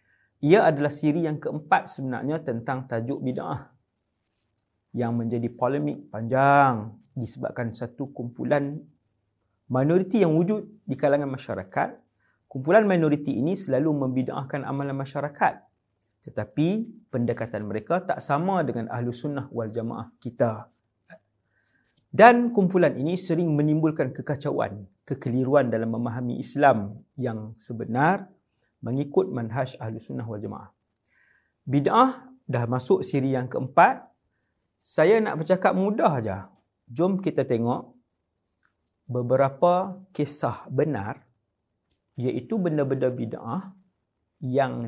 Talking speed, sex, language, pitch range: 105 wpm, male, English, 115-150 Hz